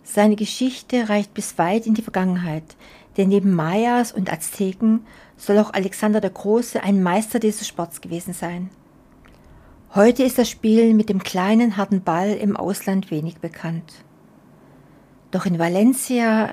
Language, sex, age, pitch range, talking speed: German, female, 60-79, 185-225 Hz, 145 wpm